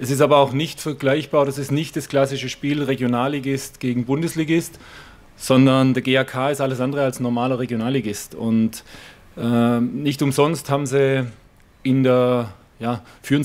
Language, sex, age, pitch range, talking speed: German, male, 30-49, 120-140 Hz, 155 wpm